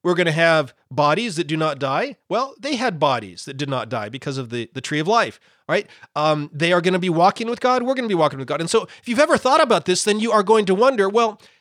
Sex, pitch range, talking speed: male, 120-195 Hz, 290 wpm